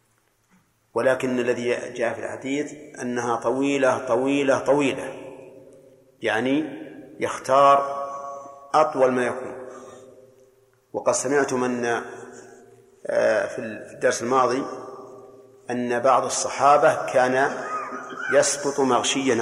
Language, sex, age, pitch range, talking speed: Arabic, male, 50-69, 130-145 Hz, 80 wpm